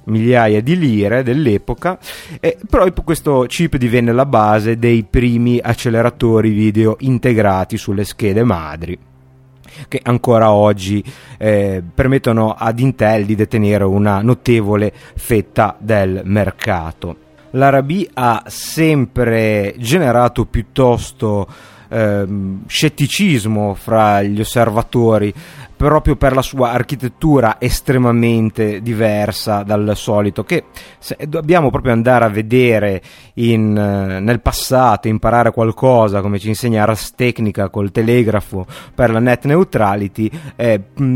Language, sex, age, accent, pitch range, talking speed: Italian, male, 30-49, native, 105-125 Hz, 110 wpm